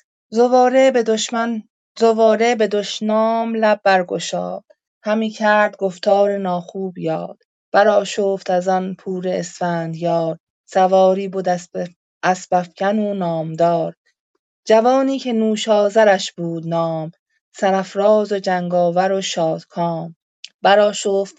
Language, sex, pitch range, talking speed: Persian, female, 175-205 Hz, 100 wpm